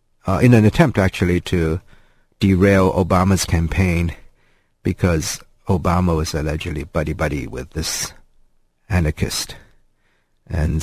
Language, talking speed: English, 105 wpm